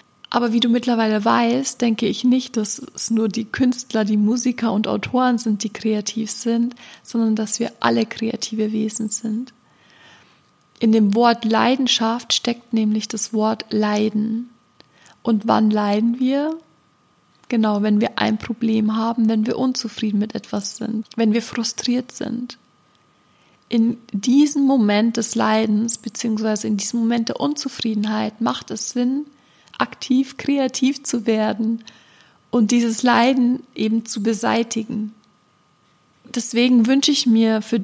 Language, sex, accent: German, female, German